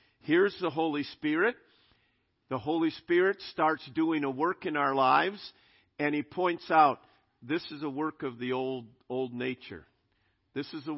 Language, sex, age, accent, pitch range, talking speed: English, male, 50-69, American, 135-210 Hz, 165 wpm